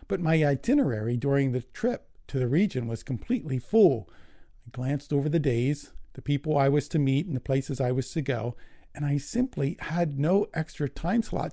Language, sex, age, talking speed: English, male, 50-69, 200 wpm